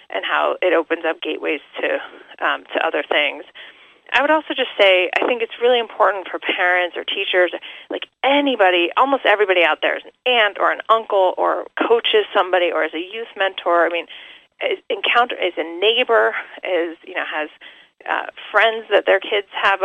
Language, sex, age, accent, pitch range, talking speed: English, female, 30-49, American, 170-255 Hz, 185 wpm